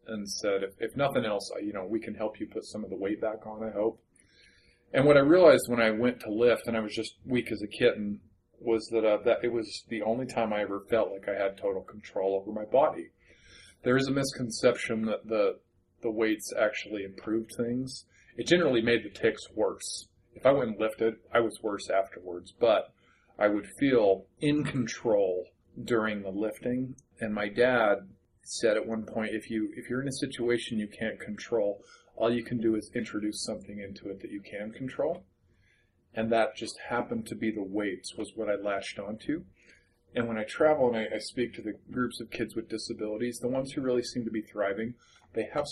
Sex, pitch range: male, 105-120 Hz